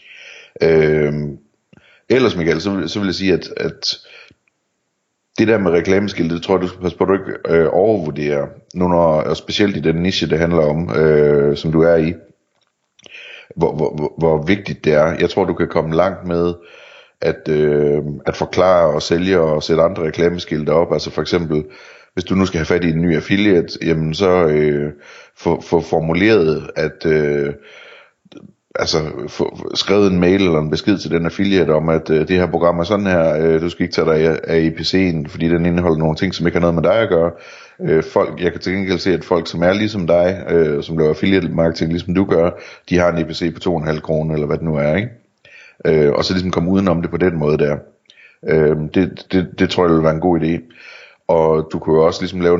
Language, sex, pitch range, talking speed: Danish, male, 80-90 Hz, 220 wpm